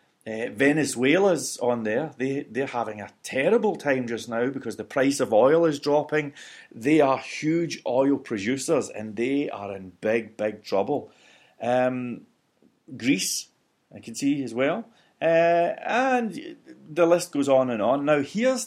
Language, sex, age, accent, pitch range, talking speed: English, male, 30-49, British, 120-170 Hz, 150 wpm